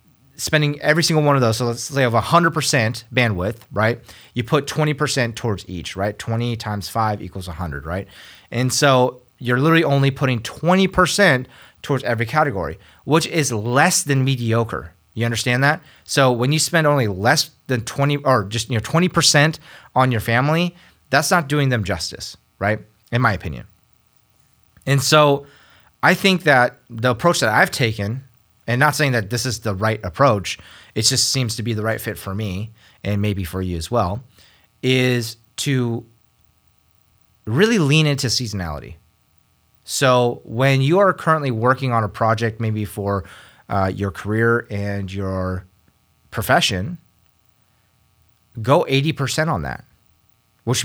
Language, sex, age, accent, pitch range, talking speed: English, male, 30-49, American, 105-140 Hz, 150 wpm